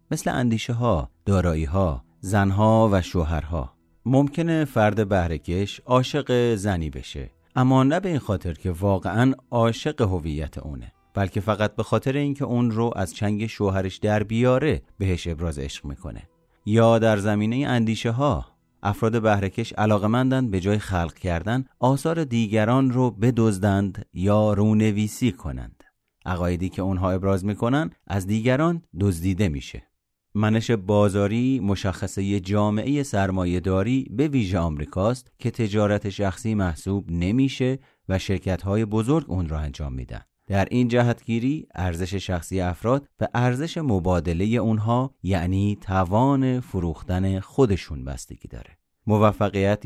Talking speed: 130 wpm